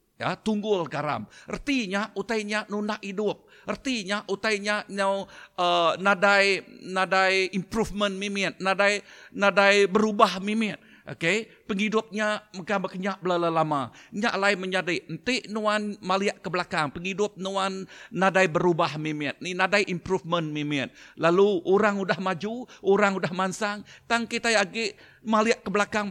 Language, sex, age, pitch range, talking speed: Indonesian, male, 50-69, 180-215 Hz, 130 wpm